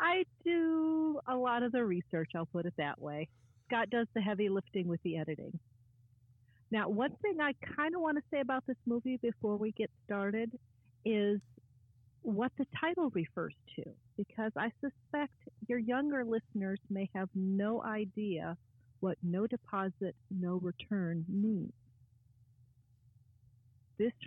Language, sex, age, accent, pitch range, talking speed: English, female, 40-59, American, 160-220 Hz, 145 wpm